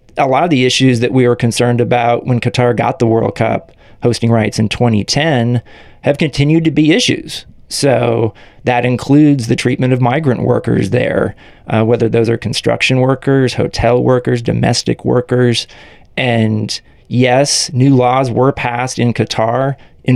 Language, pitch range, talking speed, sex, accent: English, 115-135 Hz, 160 wpm, male, American